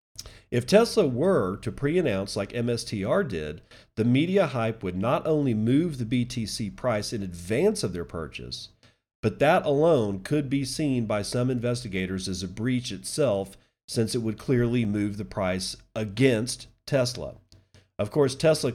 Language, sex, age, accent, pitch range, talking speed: English, male, 40-59, American, 105-140 Hz, 155 wpm